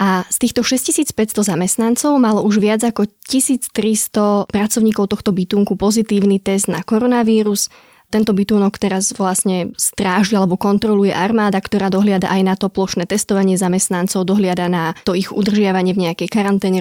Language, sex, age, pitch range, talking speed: Slovak, female, 20-39, 190-220 Hz, 145 wpm